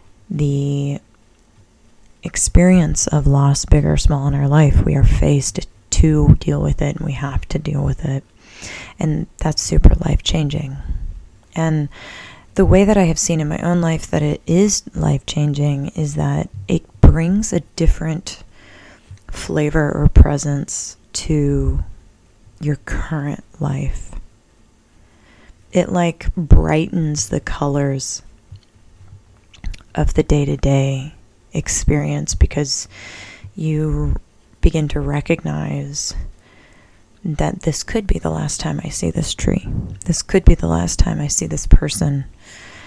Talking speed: 130 wpm